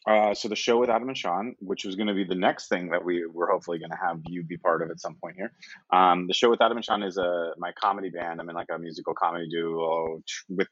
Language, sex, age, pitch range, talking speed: English, male, 30-49, 85-110 Hz, 285 wpm